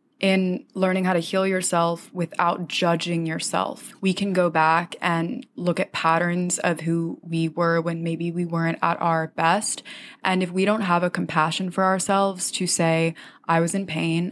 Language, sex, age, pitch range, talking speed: English, female, 20-39, 165-190 Hz, 180 wpm